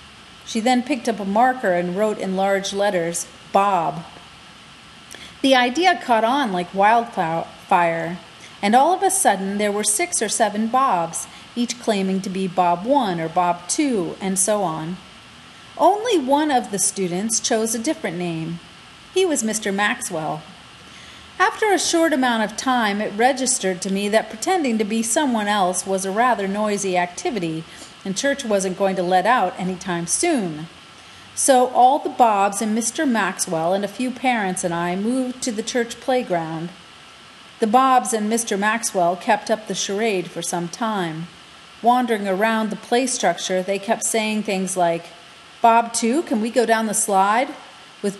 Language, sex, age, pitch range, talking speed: English, female, 40-59, 190-250 Hz, 165 wpm